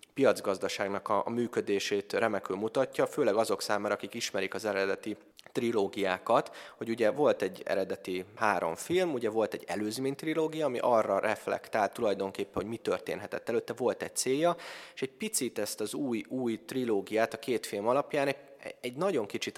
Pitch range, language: 100-130 Hz, Hungarian